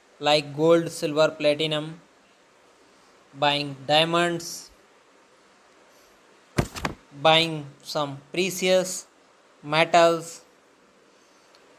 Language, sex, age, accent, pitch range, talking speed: English, male, 20-39, Indian, 155-185 Hz, 50 wpm